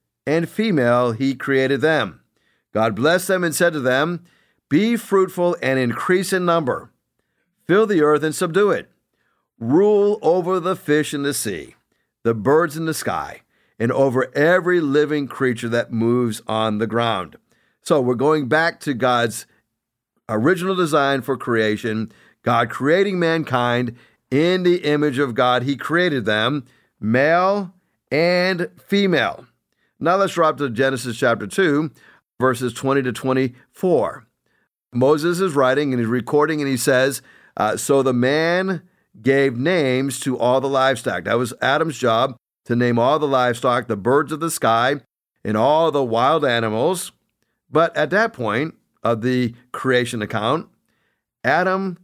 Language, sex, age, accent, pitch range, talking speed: English, male, 50-69, American, 125-170 Hz, 150 wpm